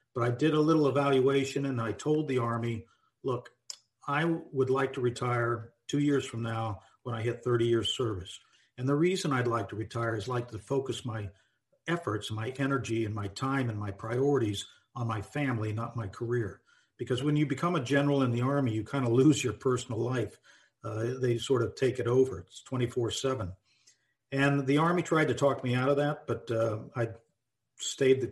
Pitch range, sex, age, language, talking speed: 115-135 Hz, male, 50-69, English, 200 wpm